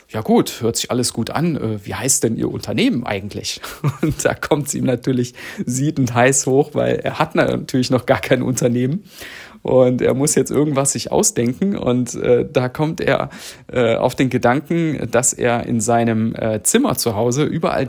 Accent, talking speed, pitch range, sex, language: German, 175 wpm, 115-140 Hz, male, German